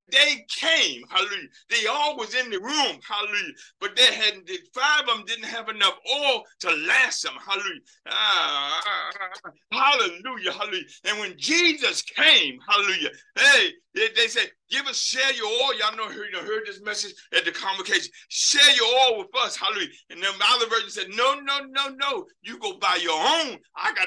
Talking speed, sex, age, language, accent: 195 wpm, male, 50-69, English, American